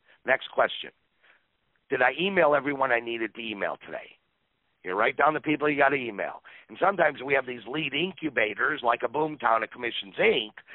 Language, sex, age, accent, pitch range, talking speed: English, male, 50-69, American, 115-155 Hz, 185 wpm